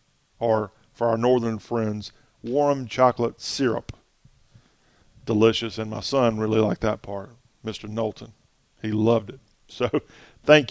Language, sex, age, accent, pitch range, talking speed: English, male, 40-59, American, 110-145 Hz, 130 wpm